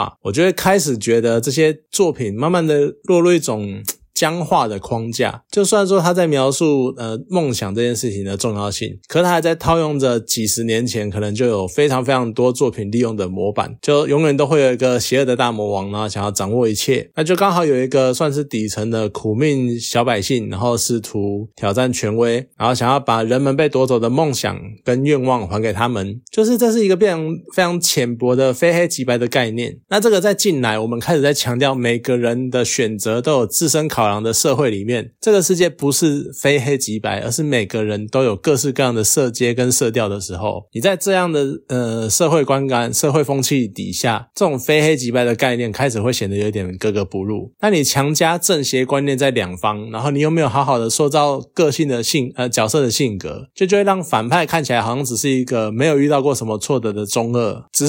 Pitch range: 115-150 Hz